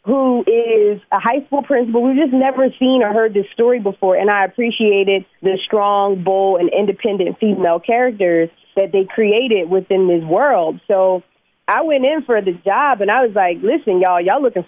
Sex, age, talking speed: female, 30-49, 190 wpm